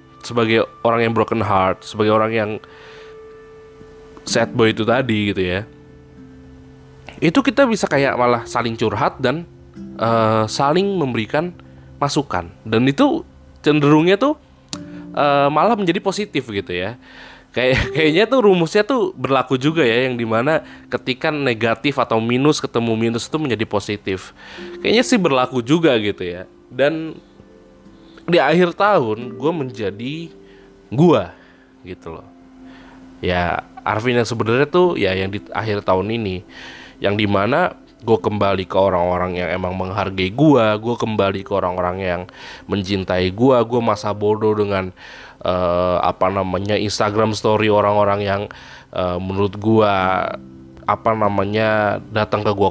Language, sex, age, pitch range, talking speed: Indonesian, male, 20-39, 95-135 Hz, 135 wpm